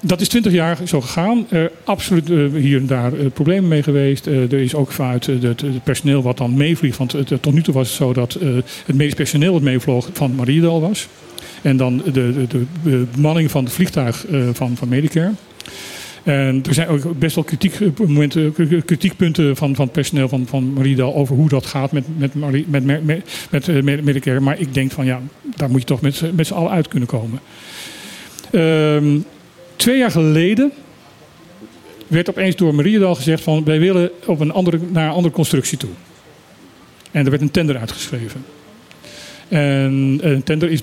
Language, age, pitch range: Dutch, 50-69, 135-165 Hz